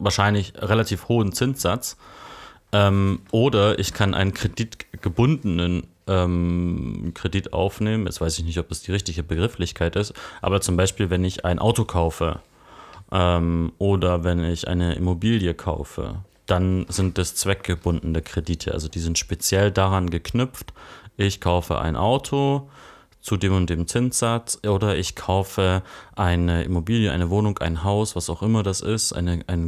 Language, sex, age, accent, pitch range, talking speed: German, male, 30-49, German, 85-100 Hz, 150 wpm